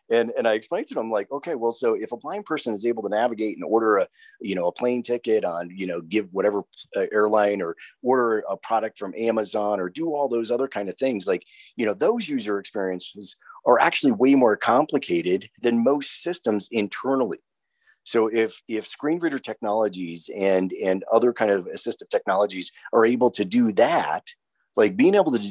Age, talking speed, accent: 30-49, 195 wpm, American